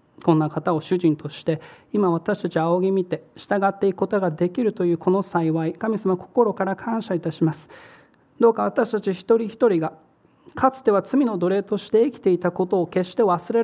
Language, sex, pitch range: Japanese, male, 165-200 Hz